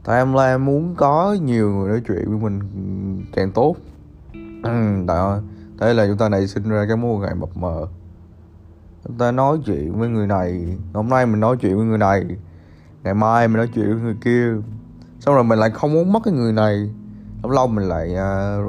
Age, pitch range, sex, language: 20-39, 95-115 Hz, male, Vietnamese